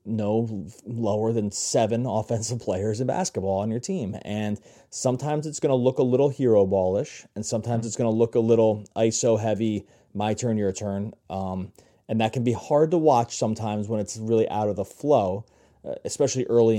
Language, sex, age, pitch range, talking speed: English, male, 30-49, 105-125 Hz, 190 wpm